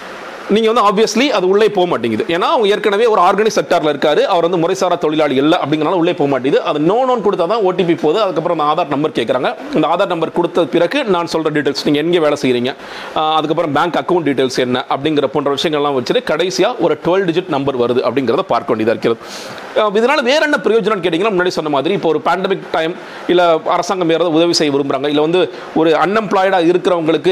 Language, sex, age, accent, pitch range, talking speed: Tamil, male, 40-59, native, 150-185 Hz, 100 wpm